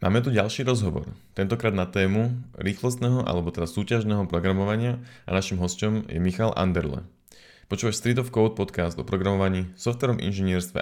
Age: 20-39